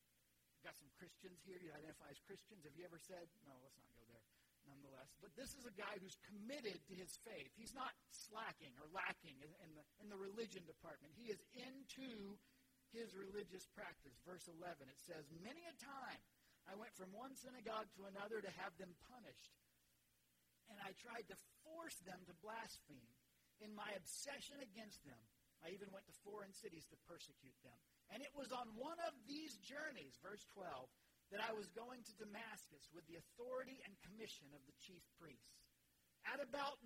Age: 50-69